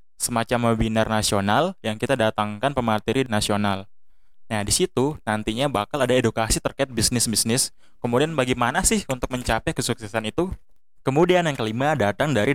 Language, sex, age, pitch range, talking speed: Indonesian, male, 20-39, 110-135 Hz, 135 wpm